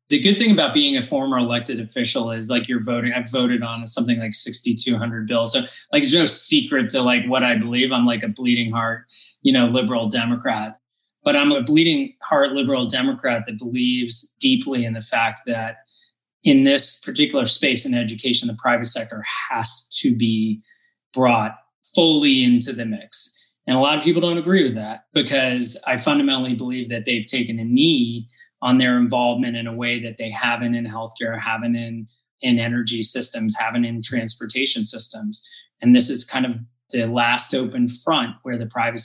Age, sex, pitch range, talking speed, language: 20-39, male, 115-140 Hz, 185 wpm, English